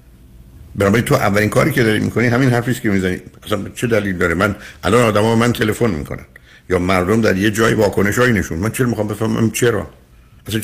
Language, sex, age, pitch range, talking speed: Persian, male, 60-79, 70-115 Hz, 185 wpm